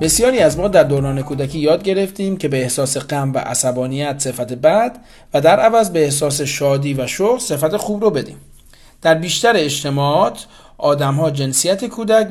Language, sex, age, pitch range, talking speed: Persian, male, 40-59, 135-195 Hz, 165 wpm